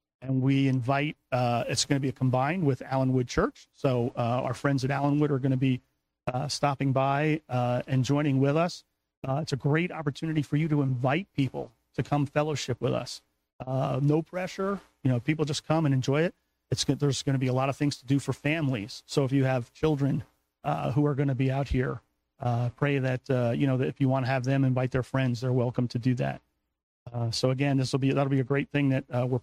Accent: American